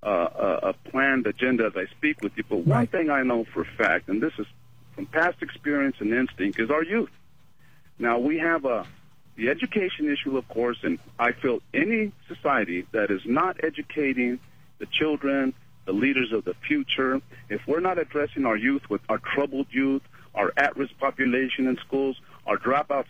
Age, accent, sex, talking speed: 50-69, American, male, 185 wpm